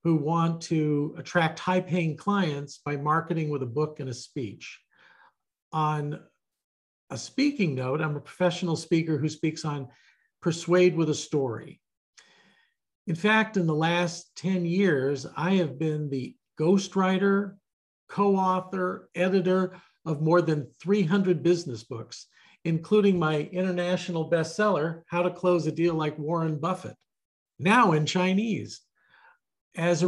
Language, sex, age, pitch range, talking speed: English, male, 50-69, 155-180 Hz, 135 wpm